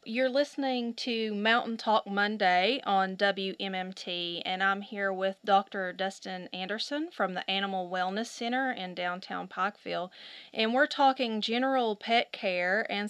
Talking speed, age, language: 135 wpm, 30-49, English